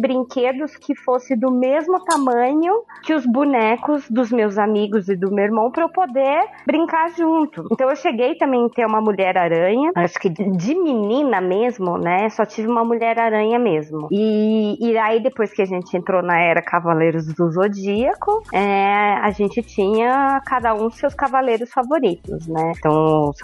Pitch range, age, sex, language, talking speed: 180-245 Hz, 20-39, female, Portuguese, 170 wpm